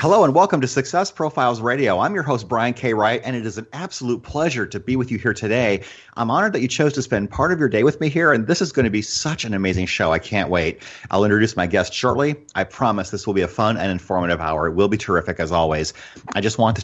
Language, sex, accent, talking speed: English, male, American, 275 wpm